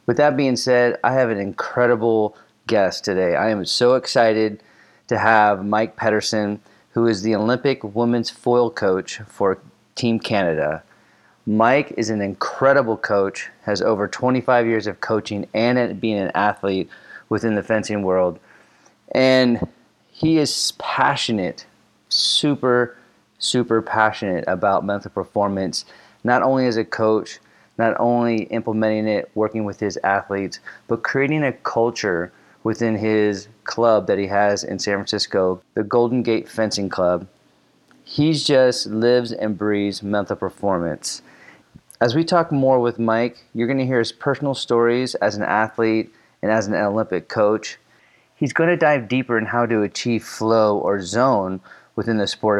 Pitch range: 105-120 Hz